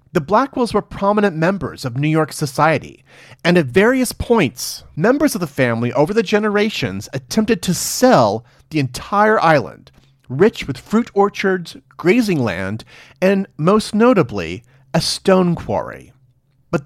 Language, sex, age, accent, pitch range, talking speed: English, male, 40-59, American, 130-190 Hz, 140 wpm